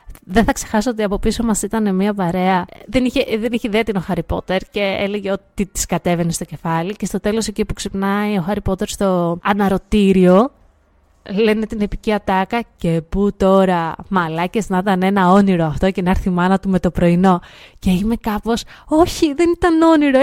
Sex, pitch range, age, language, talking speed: female, 180-225 Hz, 20-39, Greek, 195 wpm